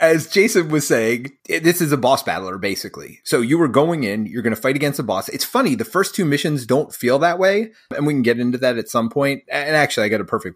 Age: 30-49